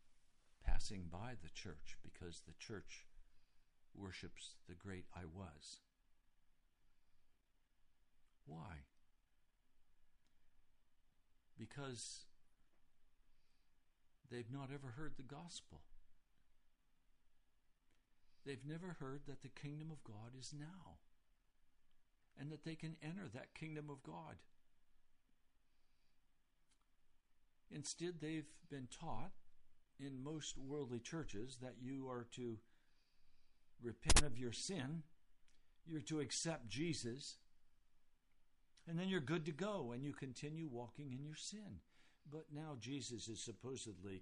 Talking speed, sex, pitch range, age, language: 105 wpm, male, 90-140 Hz, 60-79, English